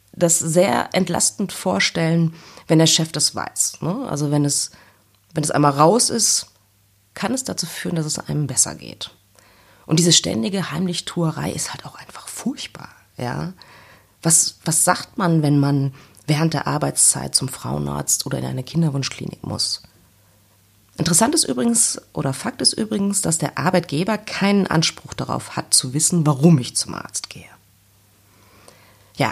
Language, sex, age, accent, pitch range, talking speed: German, female, 30-49, German, 105-170 Hz, 150 wpm